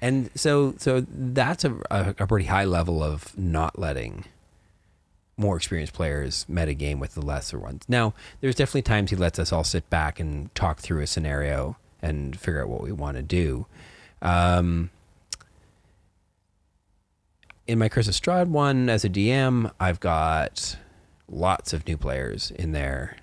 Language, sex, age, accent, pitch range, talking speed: English, male, 30-49, American, 80-100 Hz, 160 wpm